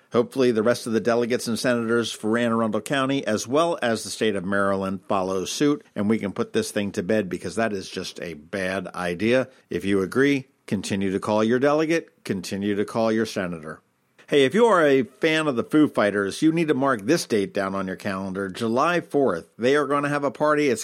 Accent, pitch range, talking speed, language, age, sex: American, 105-145 Hz, 225 wpm, English, 50-69, male